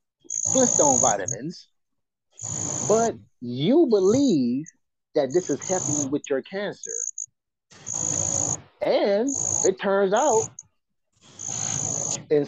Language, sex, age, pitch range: English, male, 30-49, 135-205 Hz